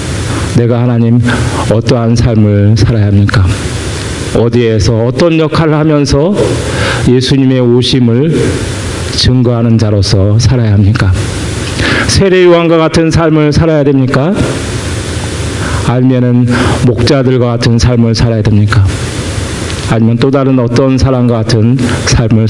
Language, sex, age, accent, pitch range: Korean, male, 40-59, native, 110-135 Hz